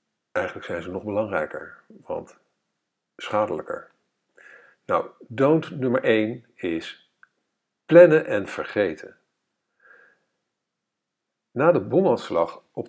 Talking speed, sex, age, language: 90 wpm, male, 50-69, Dutch